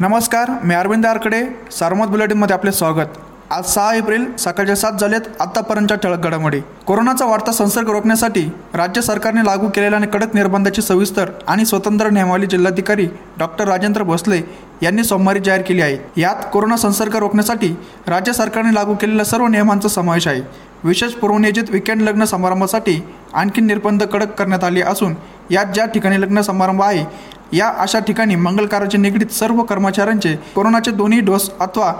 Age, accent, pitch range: 20-39, native, 190-220 Hz